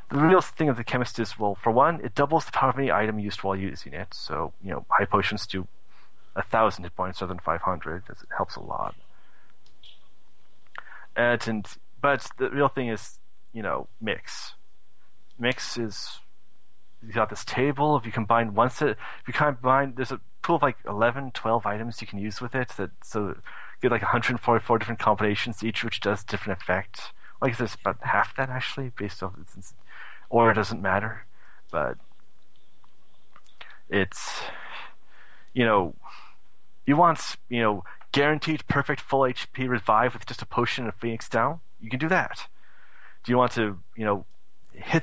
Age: 30-49